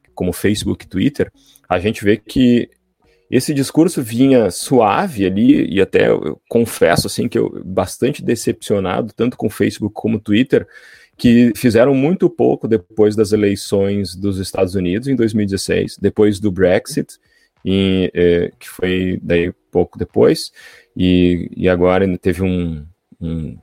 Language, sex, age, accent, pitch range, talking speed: Portuguese, male, 30-49, Brazilian, 95-115 Hz, 140 wpm